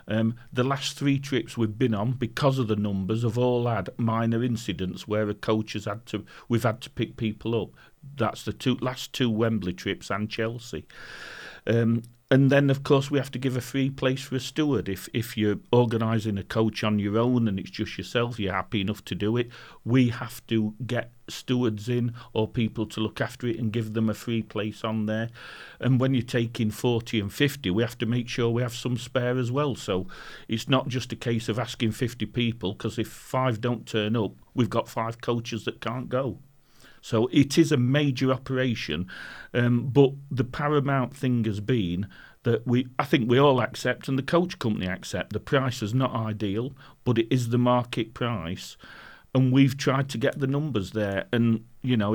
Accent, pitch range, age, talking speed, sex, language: British, 110-130 Hz, 40-59, 205 wpm, male, English